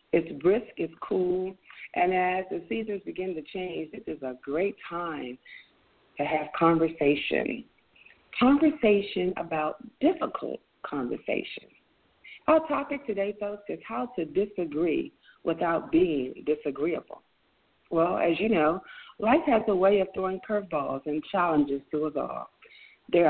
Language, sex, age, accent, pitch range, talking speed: English, female, 50-69, American, 170-245 Hz, 130 wpm